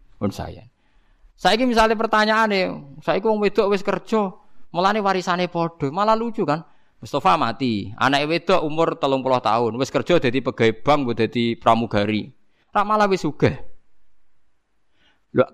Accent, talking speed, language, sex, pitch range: native, 135 wpm, Indonesian, male, 155-225 Hz